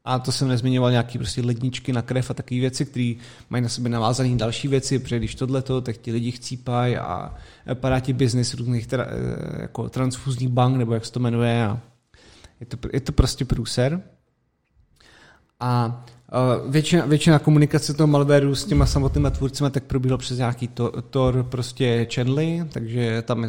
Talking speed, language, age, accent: 170 wpm, Czech, 30-49, native